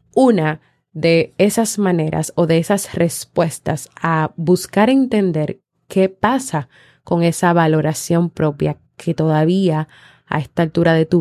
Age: 30-49